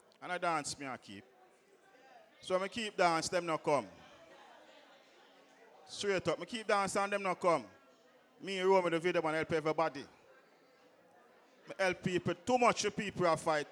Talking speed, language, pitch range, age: 170 wpm, English, 140-185 Hz, 40-59